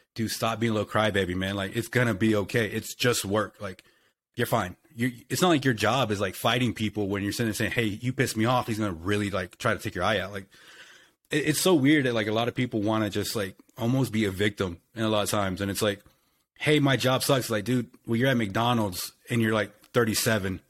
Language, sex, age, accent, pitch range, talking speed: English, male, 30-49, American, 105-125 Hz, 270 wpm